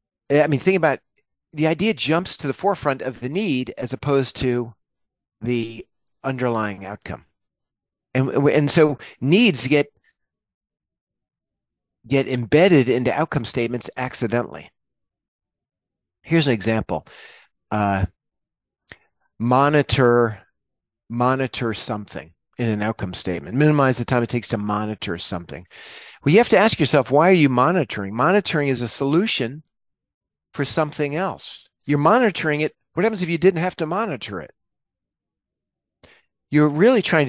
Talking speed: 130 wpm